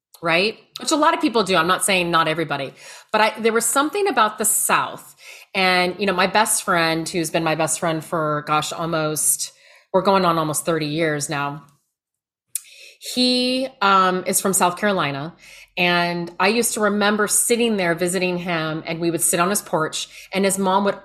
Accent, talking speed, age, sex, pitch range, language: American, 190 wpm, 30-49, female, 165-205 Hz, English